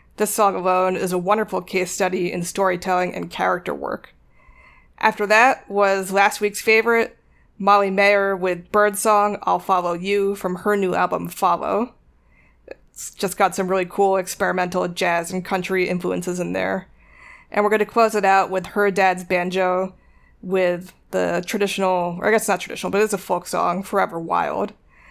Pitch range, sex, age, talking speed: 180-200 Hz, female, 20-39, 165 wpm